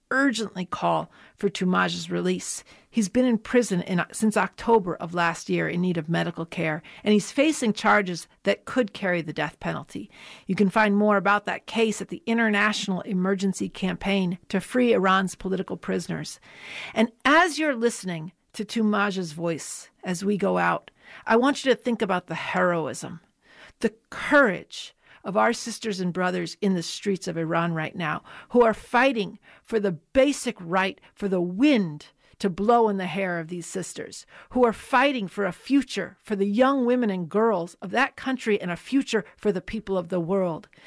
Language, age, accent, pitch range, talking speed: English, 50-69, American, 180-230 Hz, 180 wpm